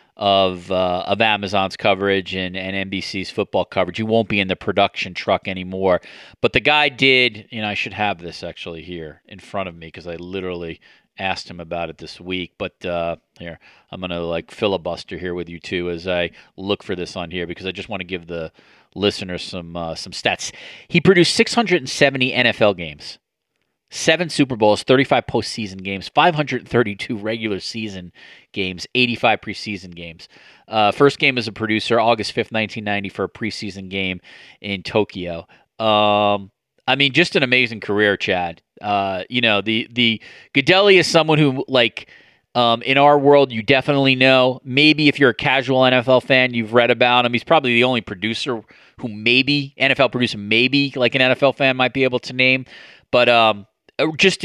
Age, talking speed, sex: 40-59, 180 wpm, male